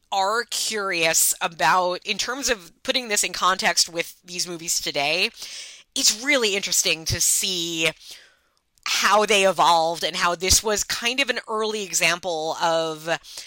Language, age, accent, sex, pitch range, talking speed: English, 30-49, American, female, 185-240 Hz, 145 wpm